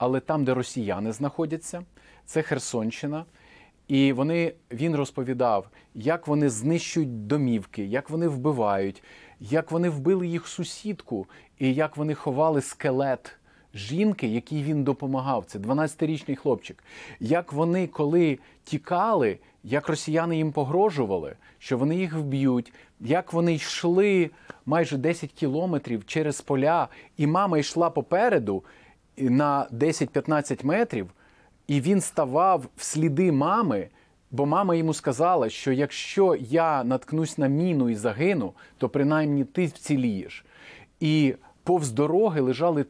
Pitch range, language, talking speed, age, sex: 135-165 Hz, Ukrainian, 125 wpm, 30-49, male